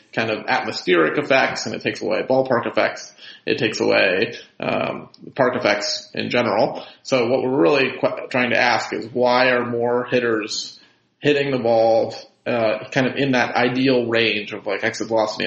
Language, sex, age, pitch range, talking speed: English, male, 30-49, 110-130 Hz, 175 wpm